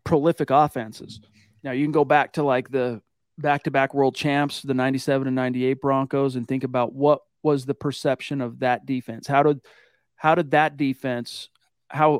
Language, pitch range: English, 130-150 Hz